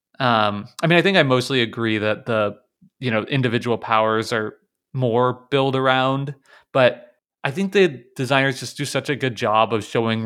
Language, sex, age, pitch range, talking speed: English, male, 30-49, 115-140 Hz, 180 wpm